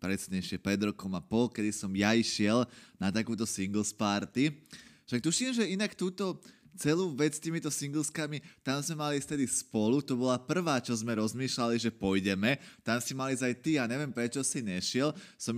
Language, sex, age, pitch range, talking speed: Slovak, male, 20-39, 100-130 Hz, 185 wpm